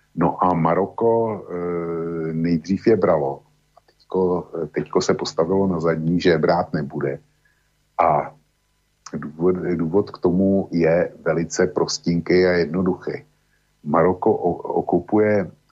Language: Slovak